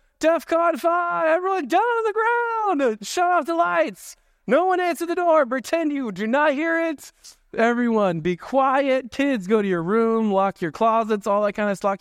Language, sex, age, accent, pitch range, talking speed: English, male, 20-39, American, 160-240 Hz, 190 wpm